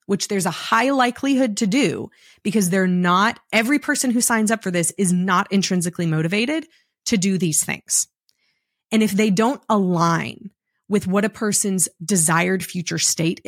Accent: American